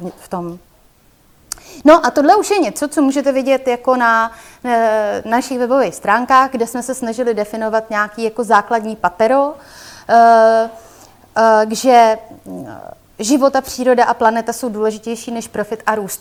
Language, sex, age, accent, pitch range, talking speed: Czech, female, 30-49, native, 220-265 Hz, 150 wpm